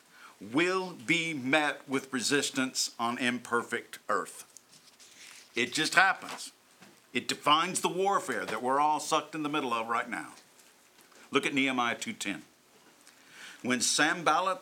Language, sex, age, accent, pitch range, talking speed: English, male, 50-69, American, 130-195 Hz, 125 wpm